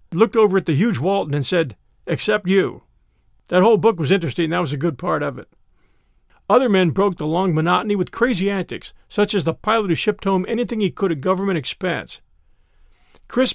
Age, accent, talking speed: 50-69, American, 200 wpm